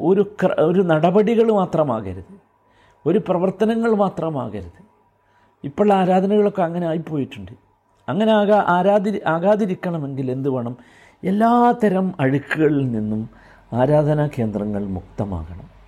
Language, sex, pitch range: Malayalam, male, 135-210 Hz